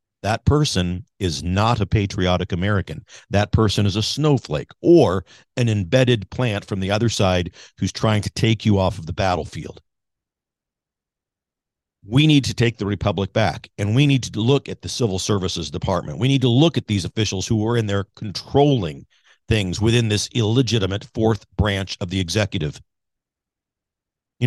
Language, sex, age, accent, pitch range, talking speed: English, male, 50-69, American, 100-125 Hz, 165 wpm